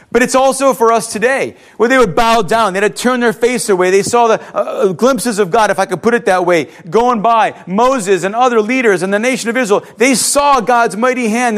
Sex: male